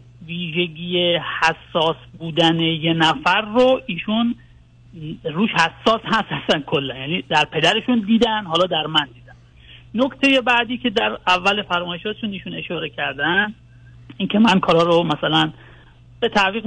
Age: 40-59